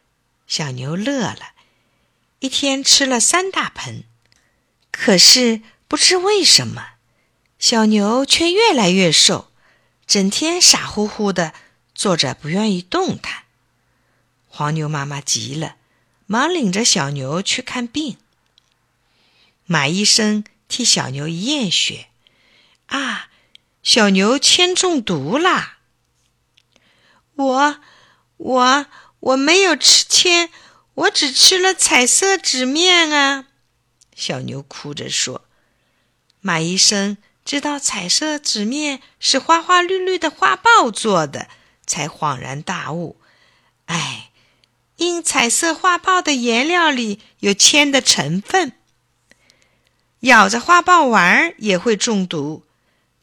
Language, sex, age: Chinese, female, 50-69